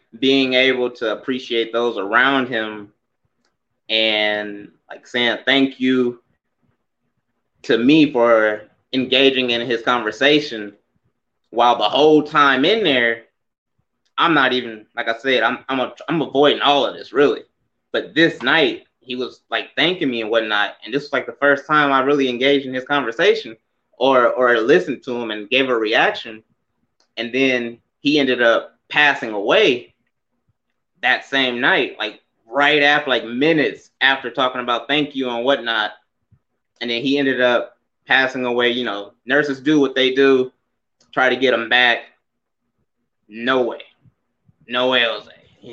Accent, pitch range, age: American, 115-140 Hz, 20-39